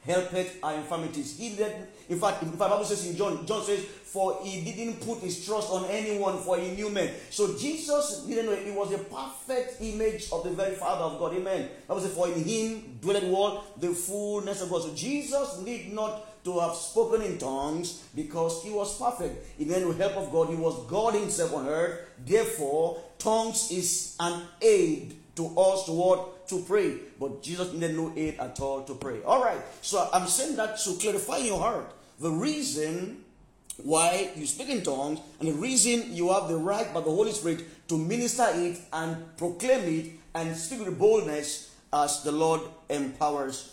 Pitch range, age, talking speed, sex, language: 165-215 Hz, 40-59, 195 wpm, male, English